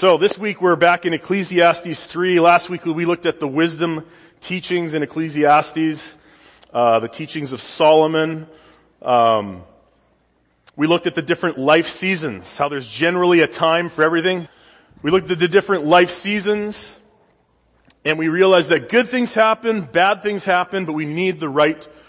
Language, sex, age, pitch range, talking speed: English, male, 30-49, 145-180 Hz, 165 wpm